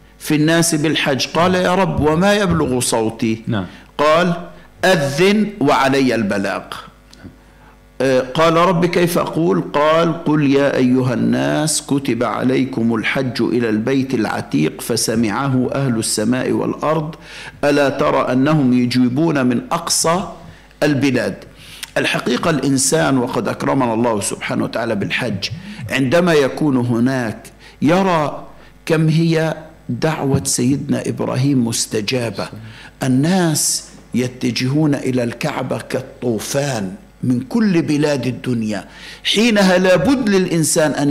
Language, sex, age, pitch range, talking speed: Arabic, male, 60-79, 125-160 Hz, 100 wpm